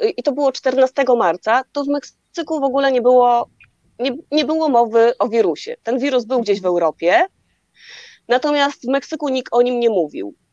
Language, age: Polish, 30-49